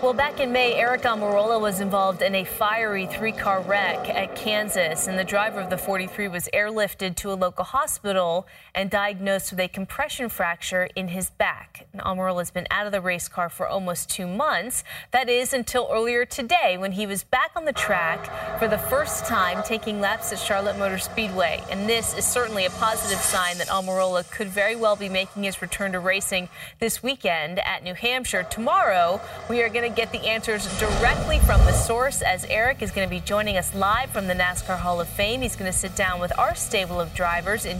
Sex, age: female, 20-39